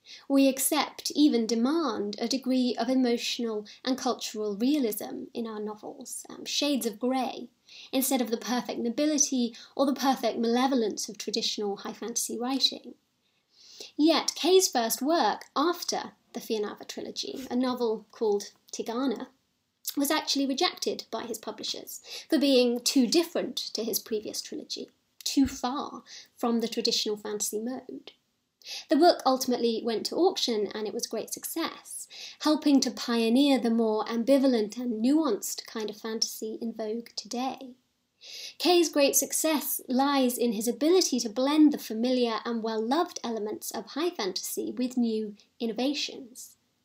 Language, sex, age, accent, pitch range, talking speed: English, female, 30-49, British, 225-280 Hz, 140 wpm